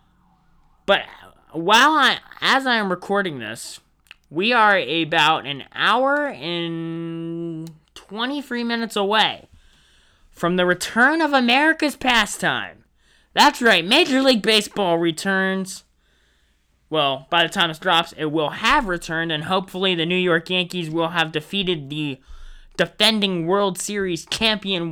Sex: male